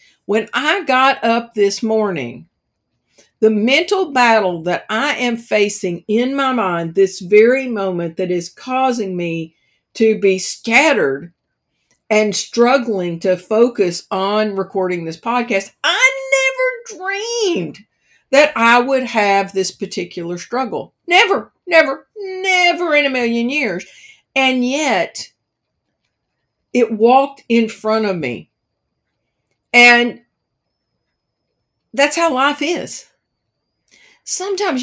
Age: 50-69